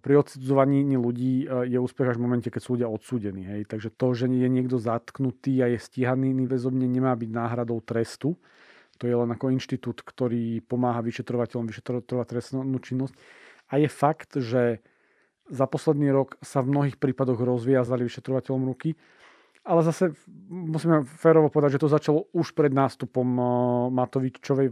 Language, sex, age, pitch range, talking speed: Slovak, male, 40-59, 125-145 Hz, 160 wpm